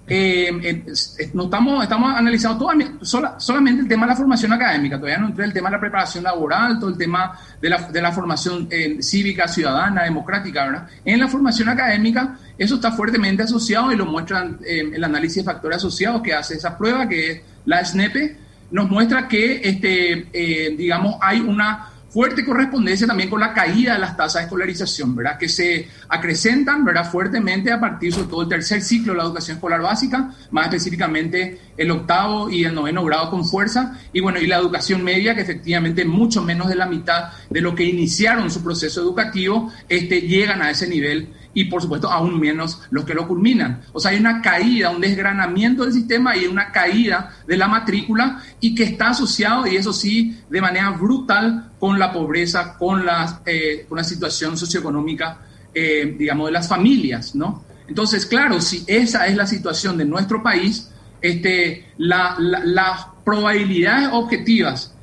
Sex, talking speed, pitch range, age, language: male, 185 wpm, 170-220 Hz, 40-59, Spanish